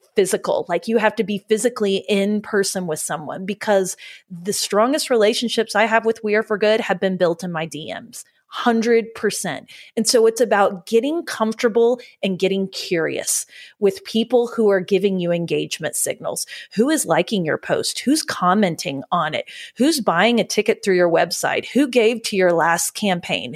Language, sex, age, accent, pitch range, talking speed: English, female, 30-49, American, 180-240 Hz, 170 wpm